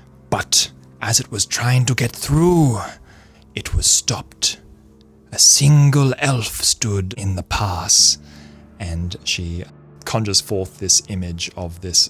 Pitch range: 85-105 Hz